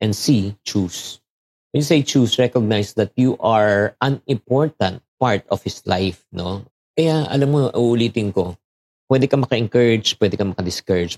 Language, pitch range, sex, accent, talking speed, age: Filipino, 100-130 Hz, male, native, 155 wpm, 50-69